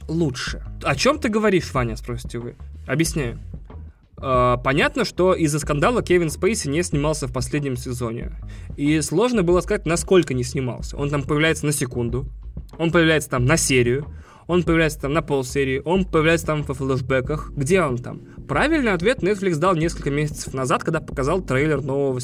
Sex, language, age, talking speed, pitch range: male, Russian, 20-39, 165 wpm, 125-170 Hz